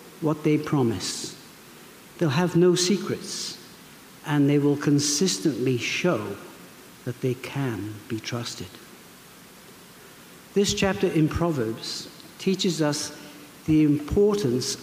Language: English